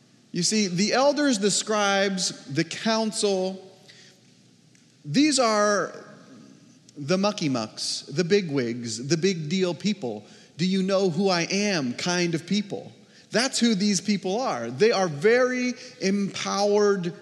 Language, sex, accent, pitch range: English, male, American, 175-230 Hz